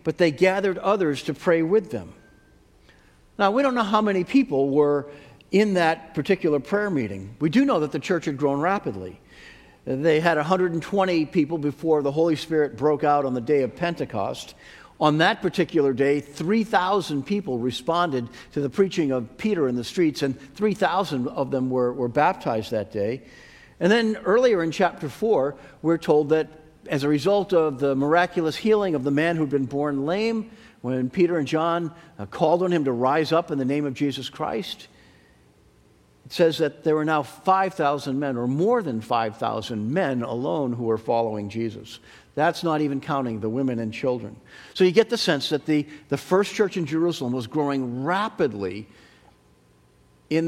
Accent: American